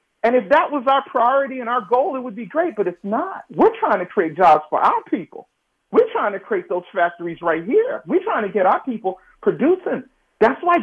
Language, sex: English, male